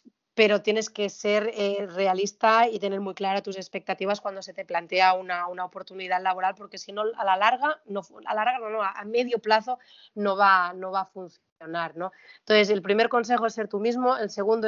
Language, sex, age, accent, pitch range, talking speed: Spanish, female, 30-49, Spanish, 190-220 Hz, 210 wpm